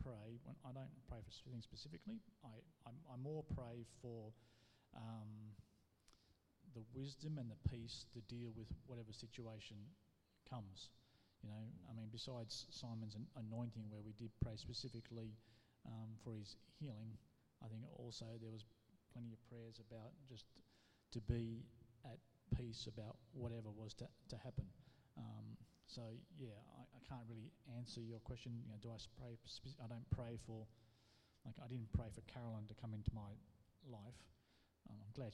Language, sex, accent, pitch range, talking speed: English, male, Australian, 110-120 Hz, 155 wpm